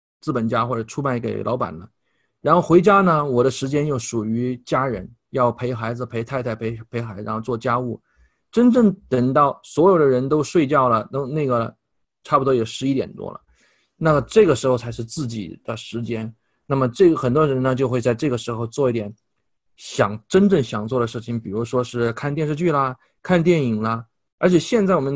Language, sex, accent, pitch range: Chinese, male, native, 115-165 Hz